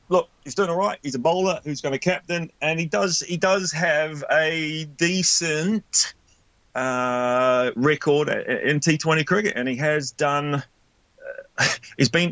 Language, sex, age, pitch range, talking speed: English, male, 30-49, 115-150 Hz, 160 wpm